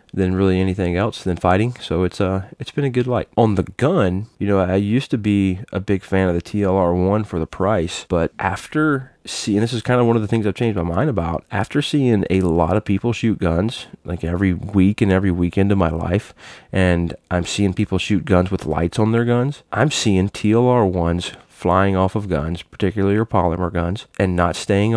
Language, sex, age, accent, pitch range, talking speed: English, male, 30-49, American, 85-105 Hz, 215 wpm